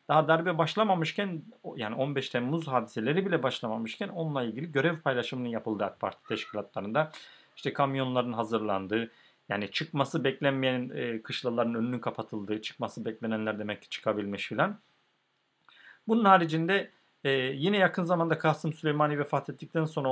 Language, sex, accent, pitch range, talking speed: Turkish, male, native, 110-155 Hz, 125 wpm